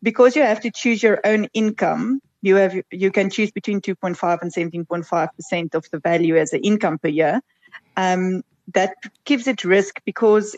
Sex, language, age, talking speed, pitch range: female, English, 30-49, 180 wpm, 180-215 Hz